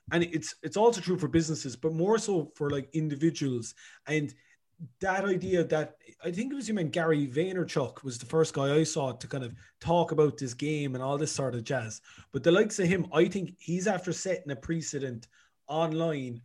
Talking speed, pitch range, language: 210 wpm, 135-165 Hz, English